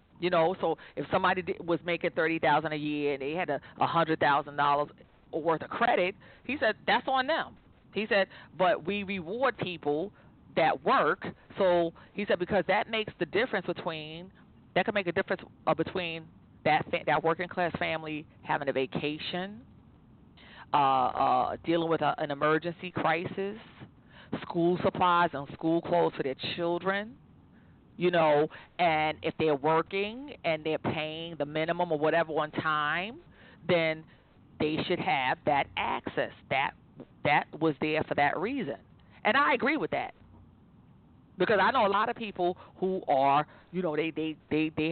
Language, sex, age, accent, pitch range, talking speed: English, female, 40-59, American, 155-185 Hz, 160 wpm